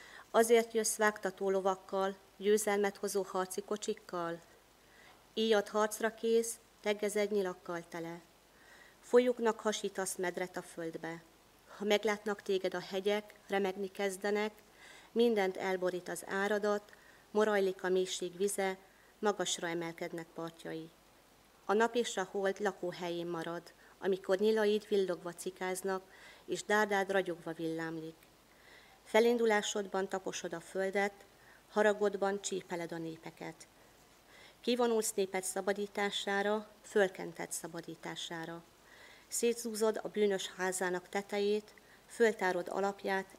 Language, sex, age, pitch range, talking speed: Hungarian, female, 40-59, 180-210 Hz, 100 wpm